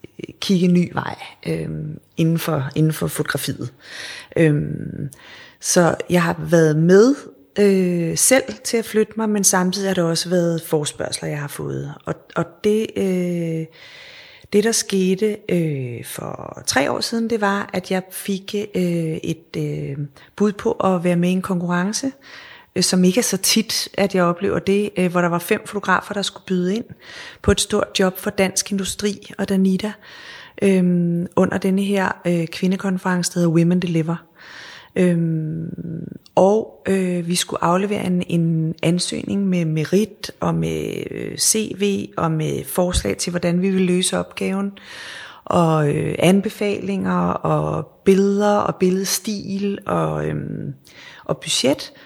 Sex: female